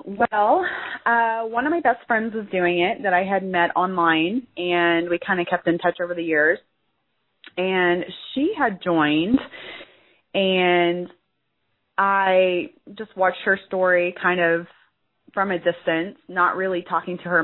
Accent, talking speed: American, 155 wpm